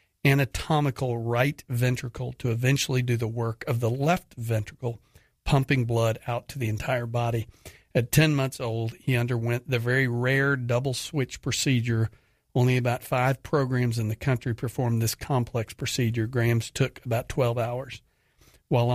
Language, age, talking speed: English, 50-69, 150 wpm